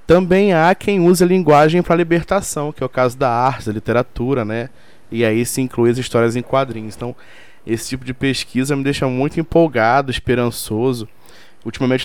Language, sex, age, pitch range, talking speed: Portuguese, male, 20-39, 115-140 Hz, 180 wpm